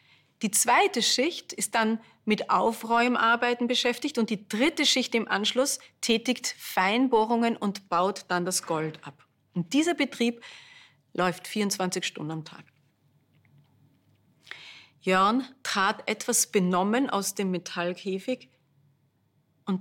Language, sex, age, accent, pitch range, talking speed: German, female, 40-59, German, 155-230 Hz, 115 wpm